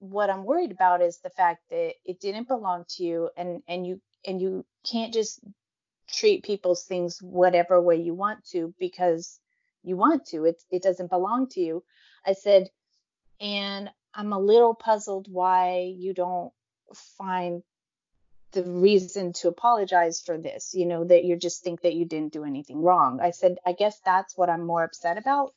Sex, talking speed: female, 180 wpm